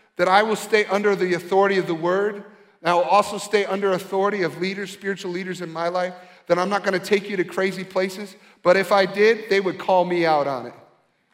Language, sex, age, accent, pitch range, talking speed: English, male, 40-59, American, 180-225 Hz, 230 wpm